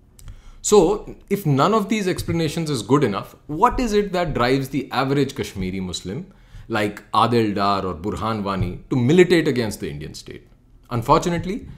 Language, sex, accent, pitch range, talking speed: English, male, Indian, 105-160 Hz, 160 wpm